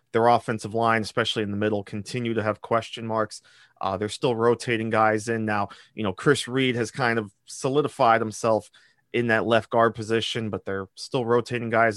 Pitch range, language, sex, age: 105-125 Hz, English, male, 30-49